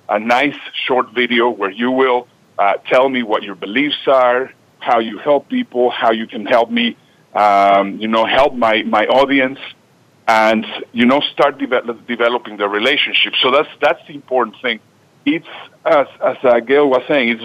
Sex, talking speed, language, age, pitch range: male, 180 wpm, English, 50-69, 110-135 Hz